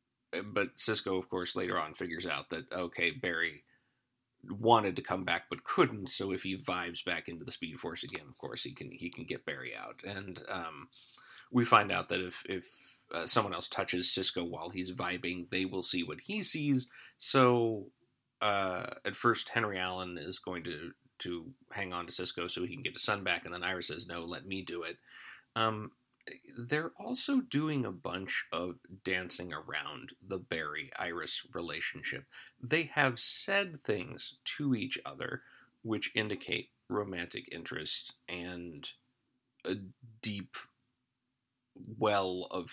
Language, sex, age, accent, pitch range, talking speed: English, male, 30-49, American, 90-125 Hz, 165 wpm